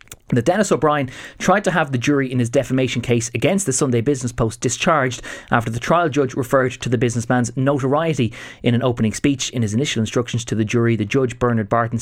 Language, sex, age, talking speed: English, male, 30-49, 210 wpm